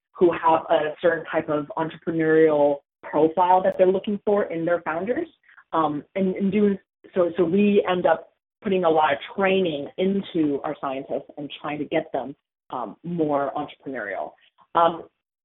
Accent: American